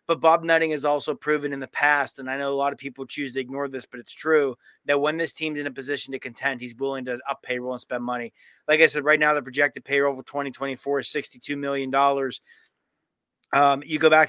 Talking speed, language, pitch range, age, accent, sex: 235 wpm, English, 135-150 Hz, 30-49, American, male